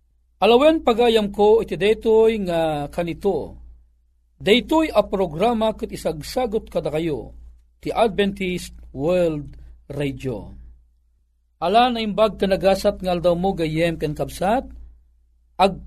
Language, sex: Filipino, male